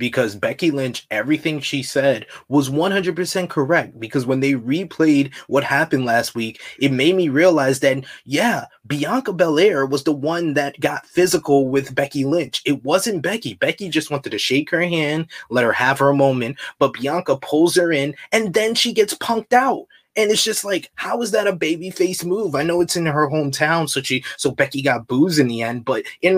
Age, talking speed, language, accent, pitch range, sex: 20-39, 200 wpm, English, American, 135-170 Hz, male